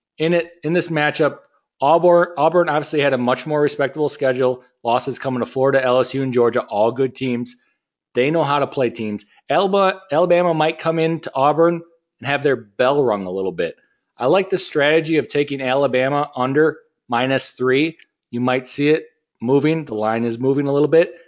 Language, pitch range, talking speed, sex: English, 120-160 Hz, 180 wpm, male